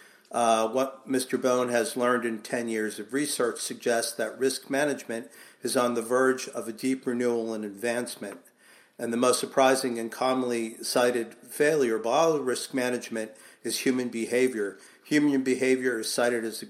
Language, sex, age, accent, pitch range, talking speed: English, male, 50-69, American, 115-135 Hz, 160 wpm